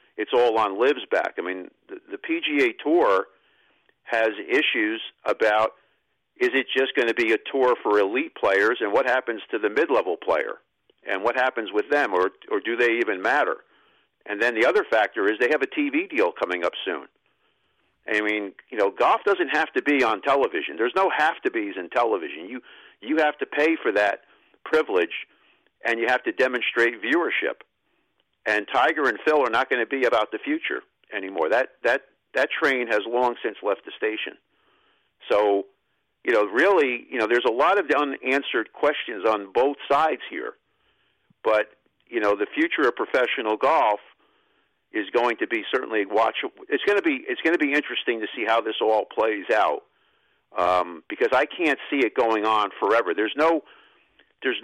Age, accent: 50-69, American